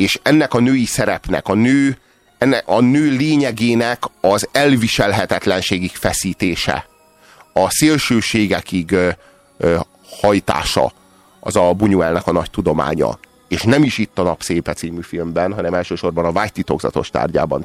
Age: 30-49